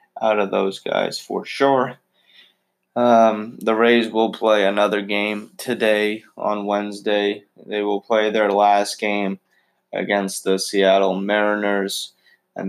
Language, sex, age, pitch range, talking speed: English, male, 20-39, 100-110 Hz, 130 wpm